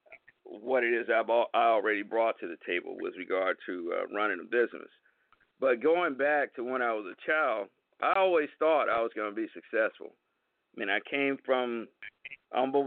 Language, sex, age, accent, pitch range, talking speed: English, male, 50-69, American, 115-140 Hz, 185 wpm